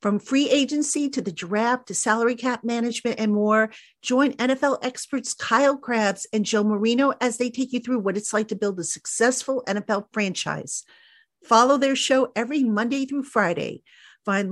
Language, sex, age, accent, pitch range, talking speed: English, female, 50-69, American, 190-250 Hz, 175 wpm